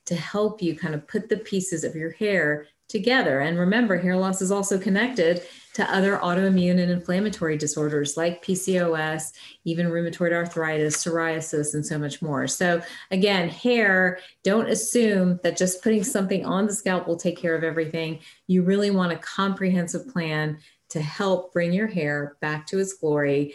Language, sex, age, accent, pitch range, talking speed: English, female, 30-49, American, 160-200 Hz, 170 wpm